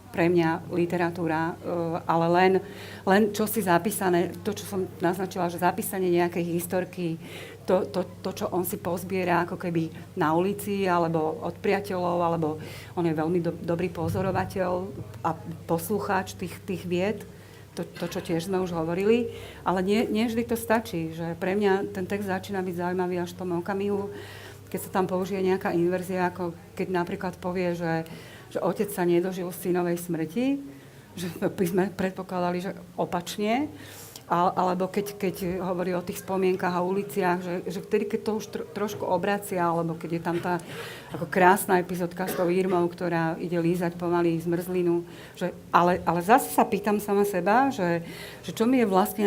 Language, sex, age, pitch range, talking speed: Slovak, female, 40-59, 170-195 Hz, 165 wpm